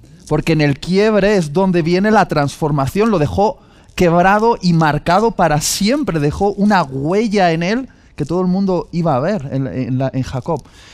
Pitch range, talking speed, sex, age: 140-195 Hz, 170 wpm, male, 20-39